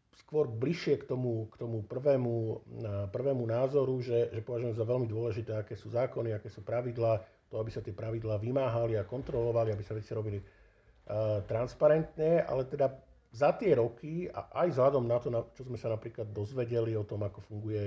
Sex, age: male, 50-69